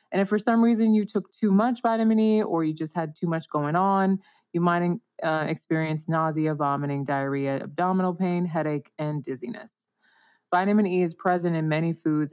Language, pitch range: English, 155-190 Hz